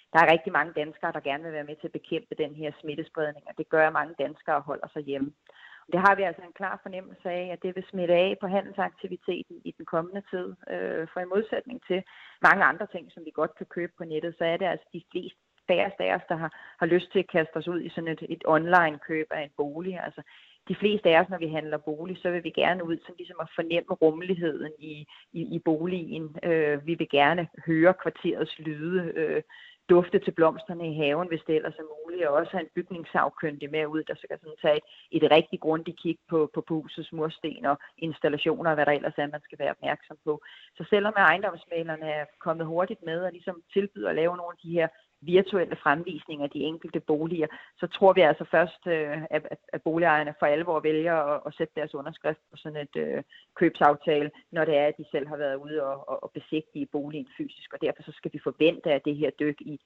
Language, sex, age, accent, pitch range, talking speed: Danish, female, 30-49, native, 150-175 Hz, 220 wpm